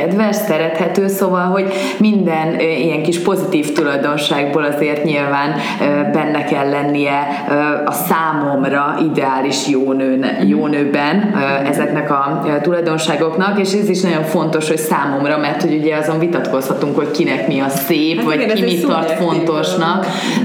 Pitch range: 145-170 Hz